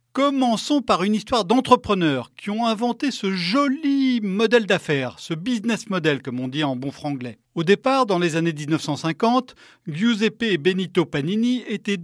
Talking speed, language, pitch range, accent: 170 wpm, French, 165-230 Hz, French